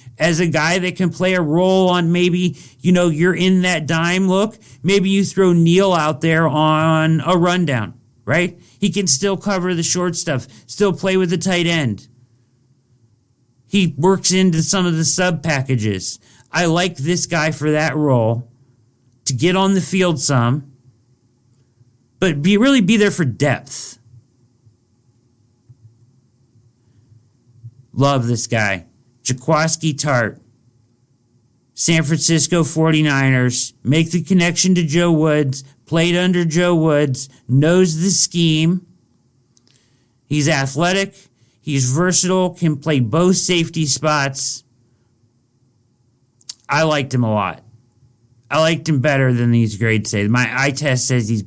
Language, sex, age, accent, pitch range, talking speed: English, male, 40-59, American, 120-175 Hz, 135 wpm